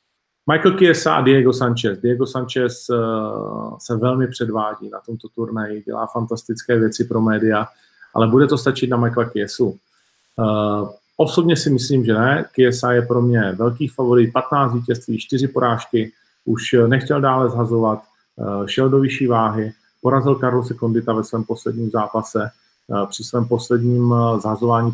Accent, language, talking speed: native, Czech, 140 wpm